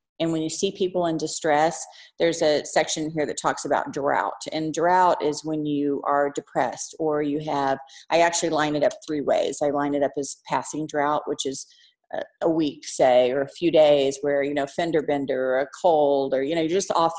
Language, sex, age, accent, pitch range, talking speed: English, female, 40-59, American, 140-160 Hz, 215 wpm